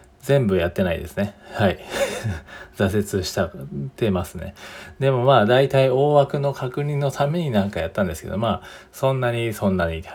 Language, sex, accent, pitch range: Japanese, male, native, 95-125 Hz